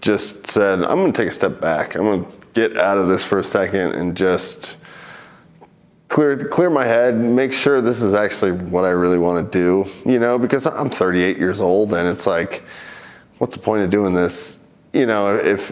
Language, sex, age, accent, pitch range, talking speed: English, male, 20-39, American, 90-120 Hz, 205 wpm